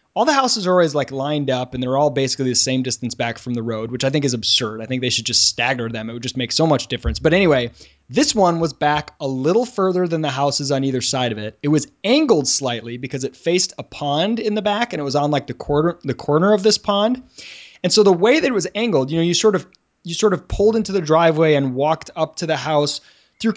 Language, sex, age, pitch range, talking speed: English, male, 20-39, 130-170 Hz, 270 wpm